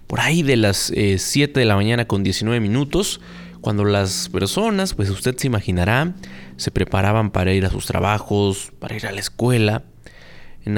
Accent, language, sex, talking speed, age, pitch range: Mexican, Spanish, male, 180 wpm, 30-49, 105-145 Hz